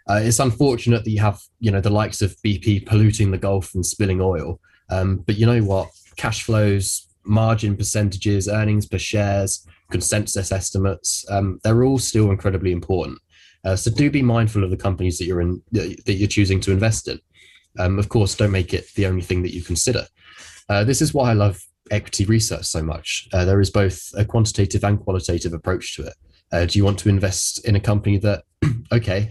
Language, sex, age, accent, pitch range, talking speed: English, male, 20-39, British, 90-105 Hz, 205 wpm